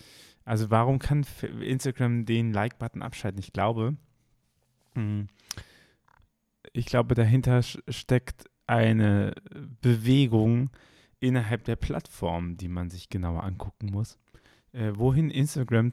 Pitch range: 100-120 Hz